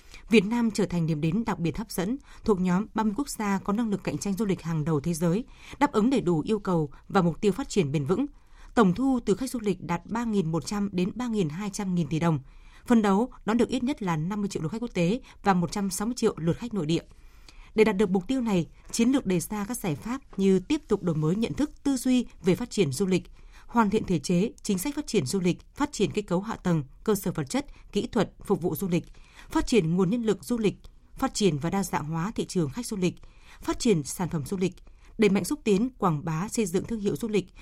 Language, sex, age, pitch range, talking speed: Vietnamese, female, 20-39, 175-225 Hz, 255 wpm